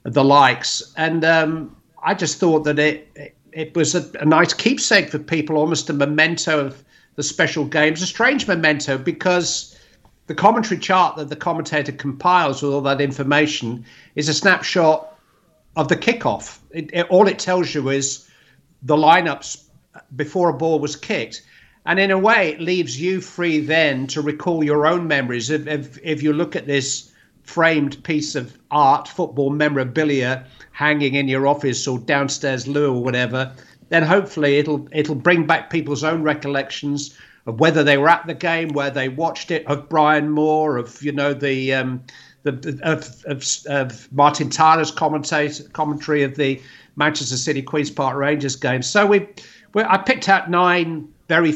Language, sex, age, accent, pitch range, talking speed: English, male, 50-69, British, 140-165 Hz, 170 wpm